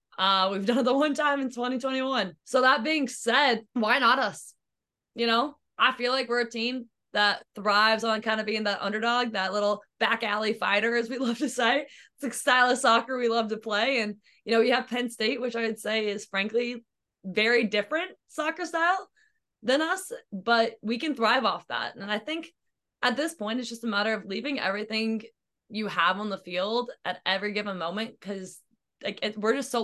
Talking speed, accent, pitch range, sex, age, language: 210 wpm, American, 205-250 Hz, female, 20-39, English